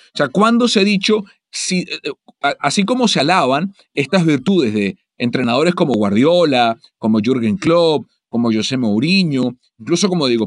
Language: English